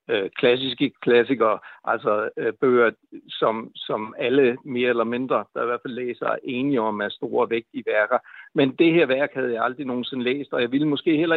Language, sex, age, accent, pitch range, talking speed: Danish, male, 60-79, native, 130-175 Hz, 200 wpm